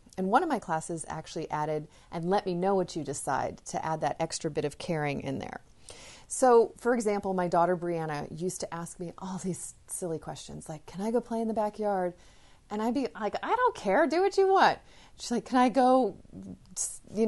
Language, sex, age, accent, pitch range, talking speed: English, female, 30-49, American, 160-220 Hz, 215 wpm